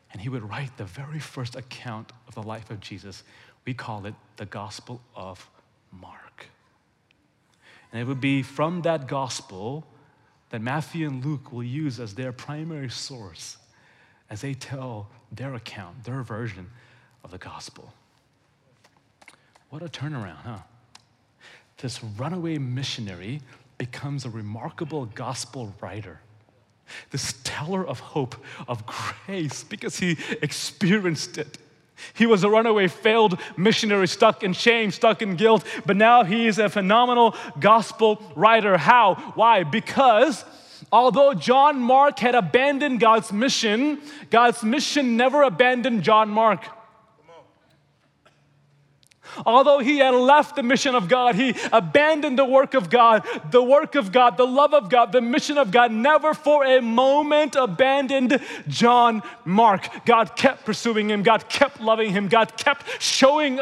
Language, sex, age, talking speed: English, male, 30-49, 140 wpm